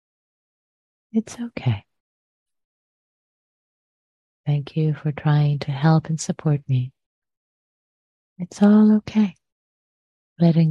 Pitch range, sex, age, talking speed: 135-175 Hz, female, 30-49, 85 wpm